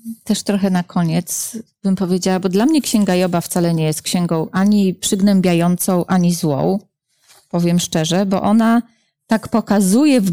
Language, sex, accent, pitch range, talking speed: Polish, female, native, 185-245 Hz, 150 wpm